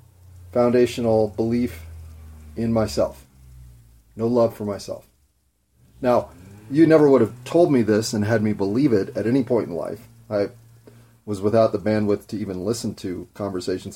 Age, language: 30-49, English